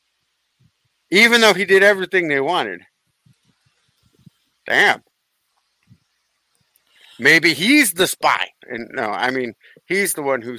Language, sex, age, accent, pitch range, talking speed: English, male, 50-69, American, 130-155 Hz, 115 wpm